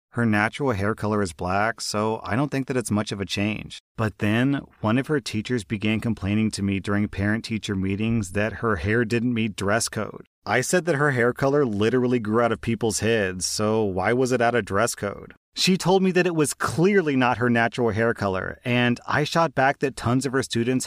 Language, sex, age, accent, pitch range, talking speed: English, male, 30-49, American, 105-135 Hz, 220 wpm